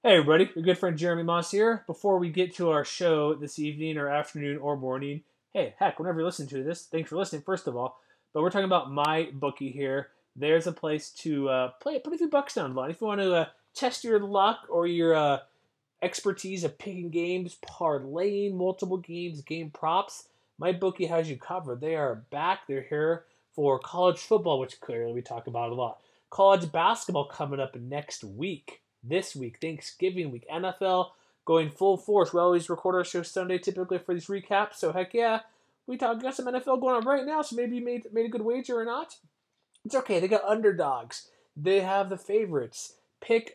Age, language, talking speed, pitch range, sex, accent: 30-49, English, 205 wpm, 160-215 Hz, male, American